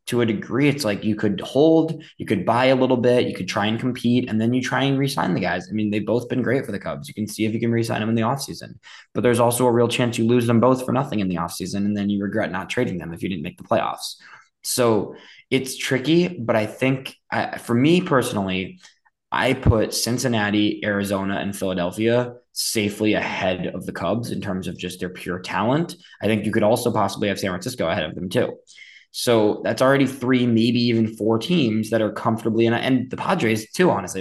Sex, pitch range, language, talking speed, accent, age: male, 100-120 Hz, English, 230 wpm, American, 20-39